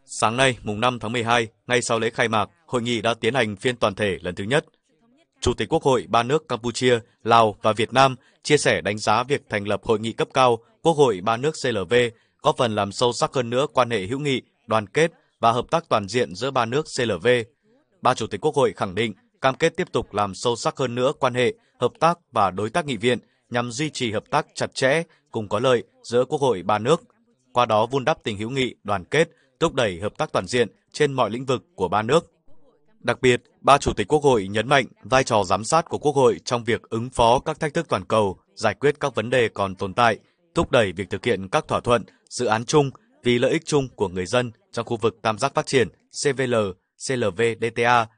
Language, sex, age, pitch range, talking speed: Vietnamese, male, 20-39, 110-140 Hz, 240 wpm